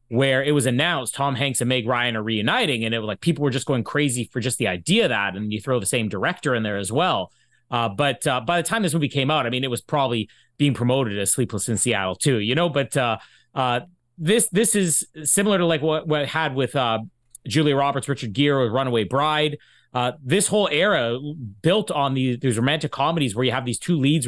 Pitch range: 120-155 Hz